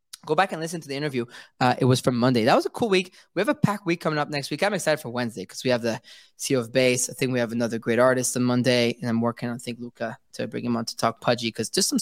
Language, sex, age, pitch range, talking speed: English, male, 20-39, 130-170 Hz, 315 wpm